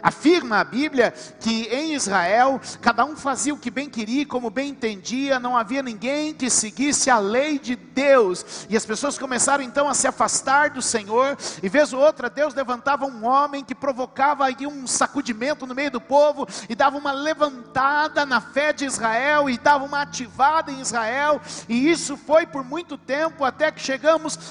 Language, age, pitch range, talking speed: Portuguese, 50-69, 230-290 Hz, 185 wpm